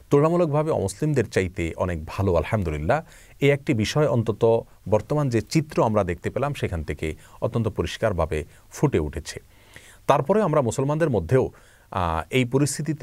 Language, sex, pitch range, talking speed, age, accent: Bengali, male, 95-140 Hz, 120 wpm, 40-59, native